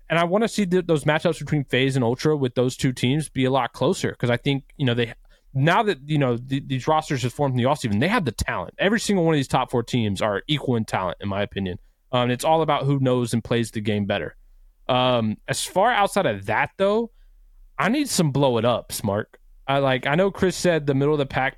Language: English